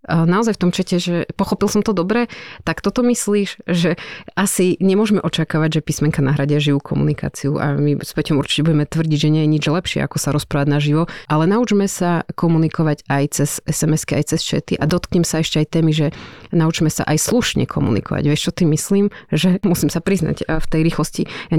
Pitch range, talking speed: 150-175 Hz, 195 wpm